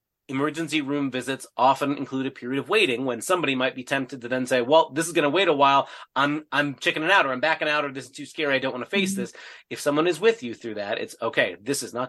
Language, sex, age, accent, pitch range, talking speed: English, male, 30-49, American, 125-155 Hz, 280 wpm